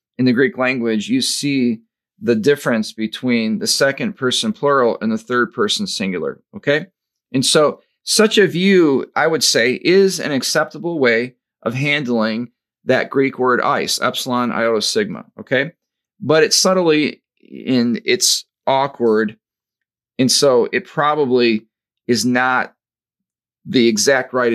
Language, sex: English, male